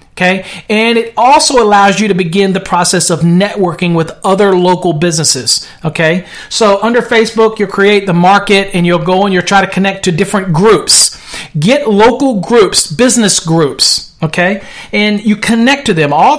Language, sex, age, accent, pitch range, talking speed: English, male, 40-59, American, 175-230 Hz, 170 wpm